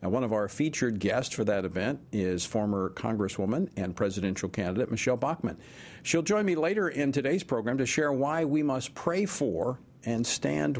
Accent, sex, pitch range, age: American, male, 105-145 Hz, 50-69